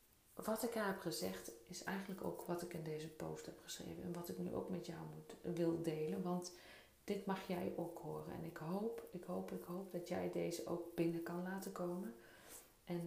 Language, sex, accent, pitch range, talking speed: Dutch, female, Dutch, 155-190 Hz, 210 wpm